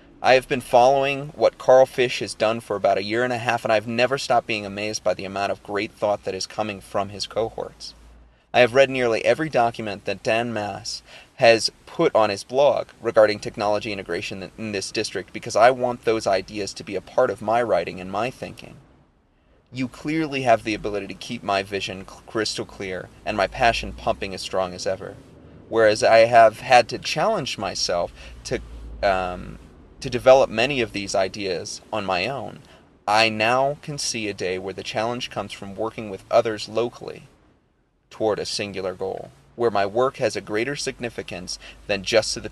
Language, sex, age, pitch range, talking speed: English, male, 30-49, 95-120 Hz, 190 wpm